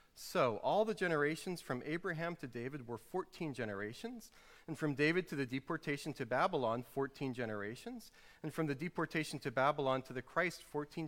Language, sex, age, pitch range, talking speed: English, male, 40-59, 140-190 Hz, 170 wpm